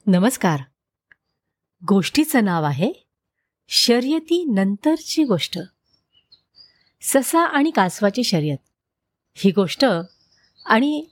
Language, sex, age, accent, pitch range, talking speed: Marathi, female, 30-49, native, 195-305 Hz, 75 wpm